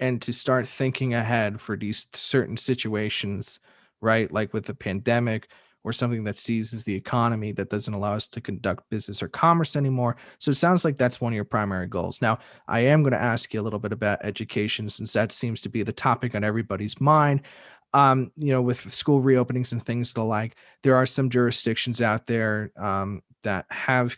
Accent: American